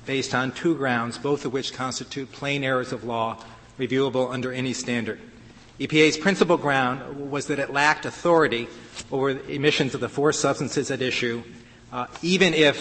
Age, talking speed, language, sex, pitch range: 40-59, 170 wpm, English, male, 120-145 Hz